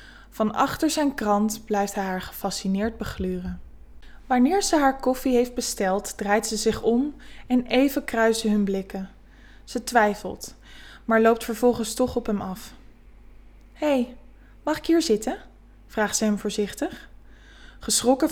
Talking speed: 140 wpm